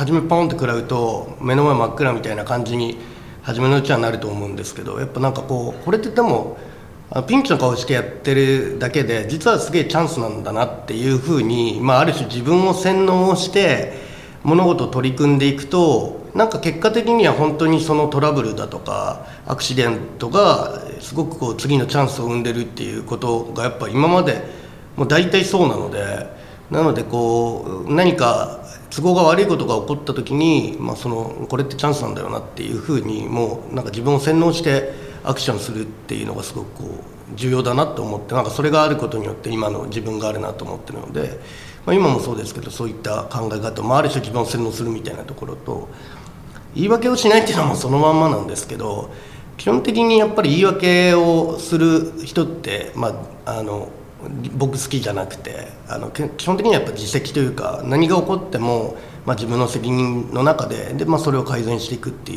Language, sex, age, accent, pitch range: Japanese, male, 40-59, native, 115-155 Hz